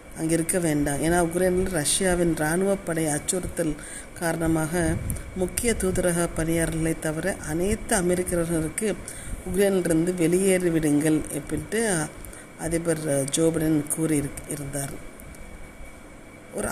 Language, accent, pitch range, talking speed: Tamil, native, 155-185 Hz, 85 wpm